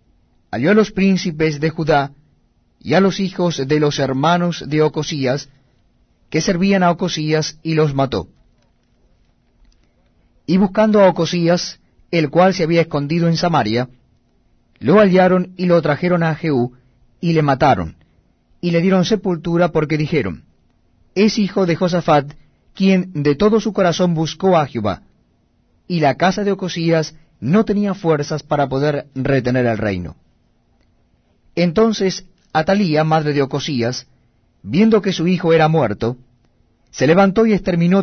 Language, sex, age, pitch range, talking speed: Spanish, male, 30-49, 140-180 Hz, 140 wpm